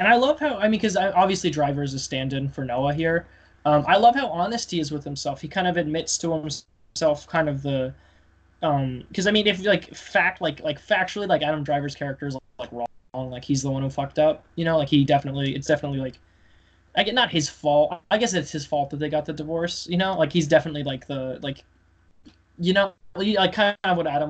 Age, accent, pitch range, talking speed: 20-39, American, 135-165 Hz, 235 wpm